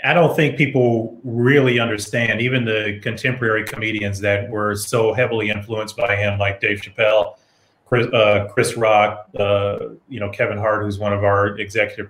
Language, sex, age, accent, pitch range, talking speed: English, male, 30-49, American, 105-125 Hz, 170 wpm